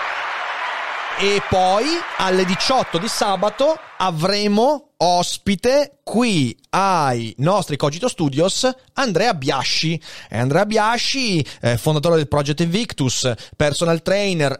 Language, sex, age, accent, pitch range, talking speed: Italian, male, 30-49, native, 130-185 Hz, 95 wpm